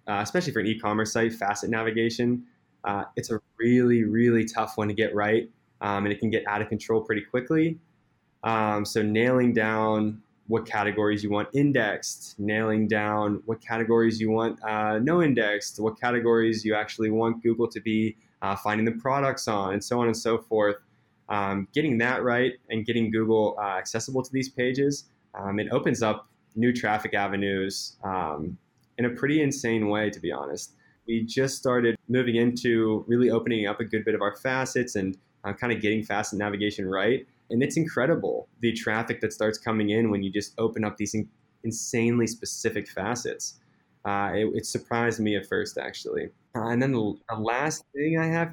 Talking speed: 185 wpm